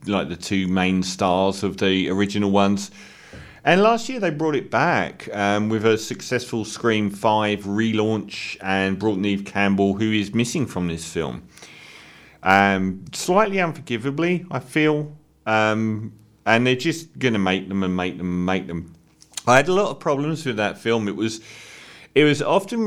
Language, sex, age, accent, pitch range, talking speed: English, male, 40-59, British, 100-120 Hz, 170 wpm